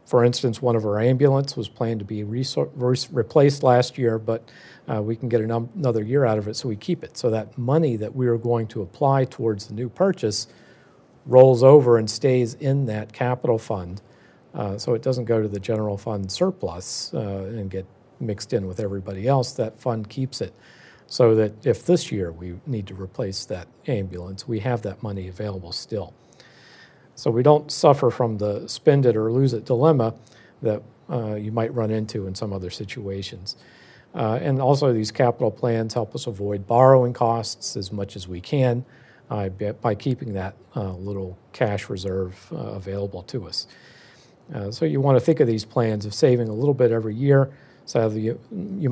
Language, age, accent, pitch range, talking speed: English, 50-69, American, 105-130 Hz, 195 wpm